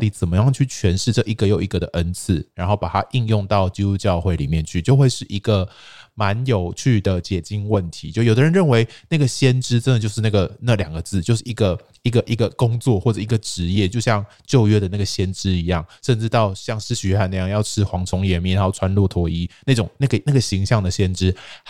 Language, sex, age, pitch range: Chinese, male, 20-39, 95-120 Hz